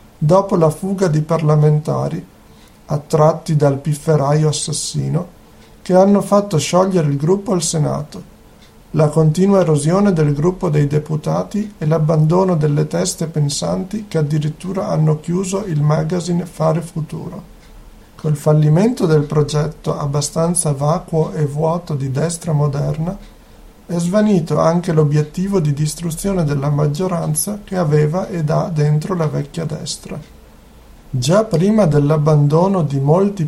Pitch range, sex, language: 150-180 Hz, male, Italian